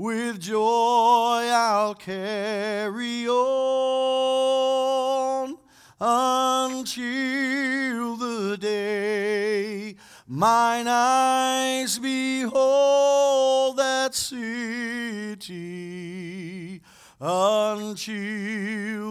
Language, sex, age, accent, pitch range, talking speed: English, male, 40-59, American, 140-235 Hz, 45 wpm